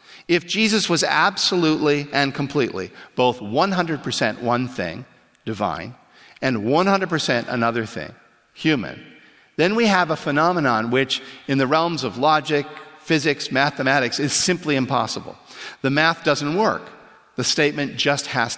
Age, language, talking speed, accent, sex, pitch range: 50-69, English, 130 wpm, American, male, 115-155 Hz